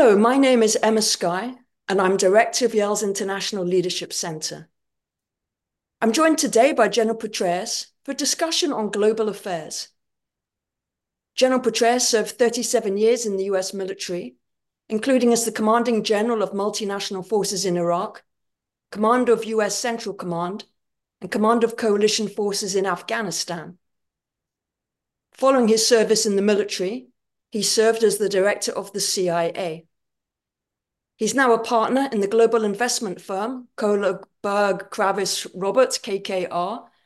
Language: English